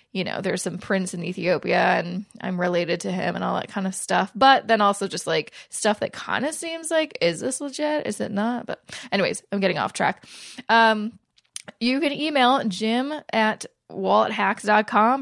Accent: American